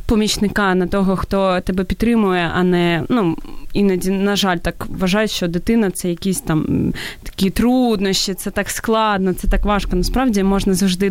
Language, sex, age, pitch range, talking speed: Ukrainian, female, 20-39, 185-225 Hz, 160 wpm